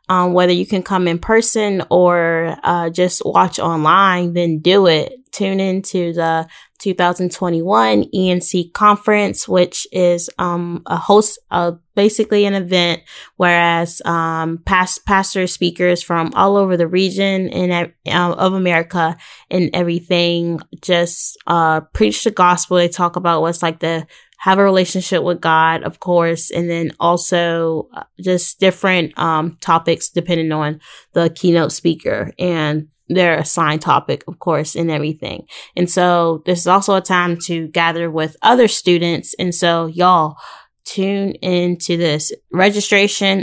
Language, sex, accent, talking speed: English, female, American, 145 wpm